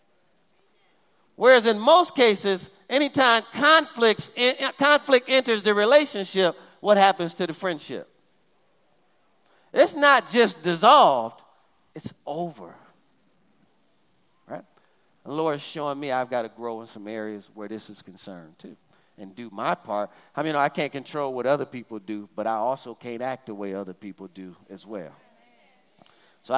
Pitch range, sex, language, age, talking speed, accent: 110-180 Hz, male, English, 40-59, 150 wpm, American